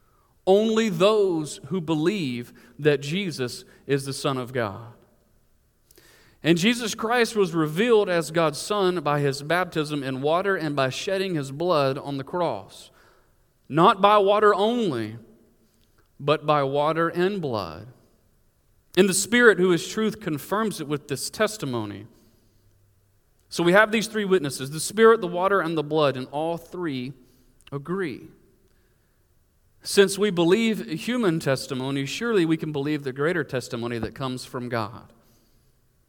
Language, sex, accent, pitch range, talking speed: English, male, American, 120-185 Hz, 140 wpm